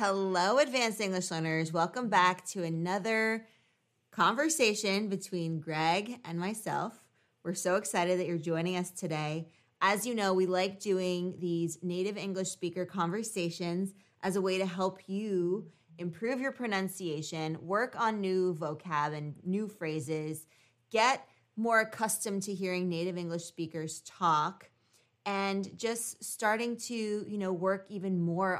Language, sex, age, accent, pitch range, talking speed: English, female, 20-39, American, 165-200 Hz, 140 wpm